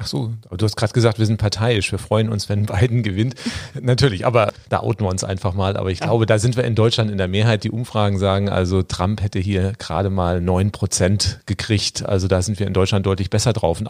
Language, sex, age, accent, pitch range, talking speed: German, male, 40-59, German, 100-115 Hz, 235 wpm